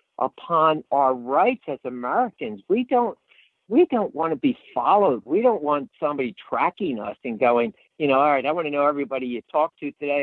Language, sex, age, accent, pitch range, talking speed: English, male, 50-69, American, 125-165 Hz, 200 wpm